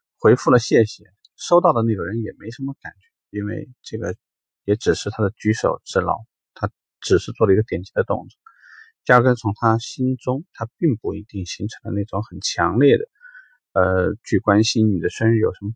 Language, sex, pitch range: Chinese, male, 100-130 Hz